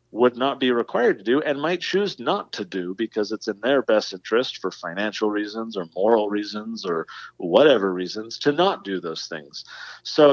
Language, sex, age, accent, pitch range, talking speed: English, male, 40-59, American, 105-135 Hz, 190 wpm